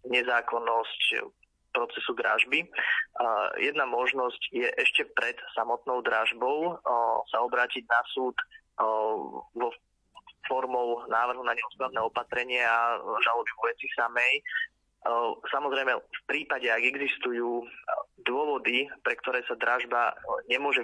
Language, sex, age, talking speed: Slovak, male, 20-39, 100 wpm